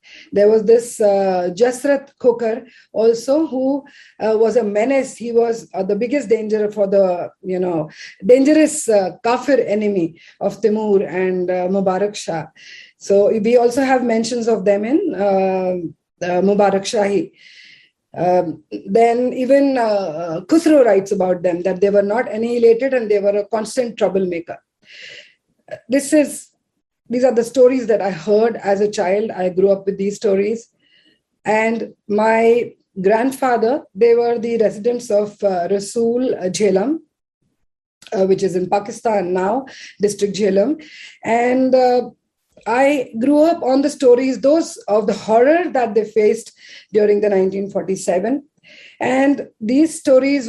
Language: English